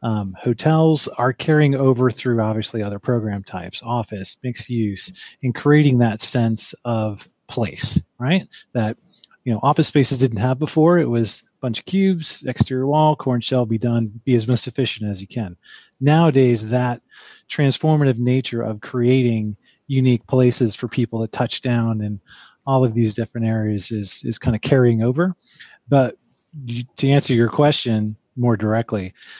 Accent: American